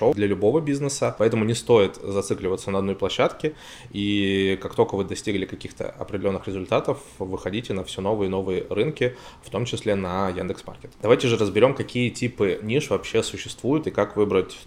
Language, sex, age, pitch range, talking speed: Russian, male, 20-39, 95-115 Hz, 170 wpm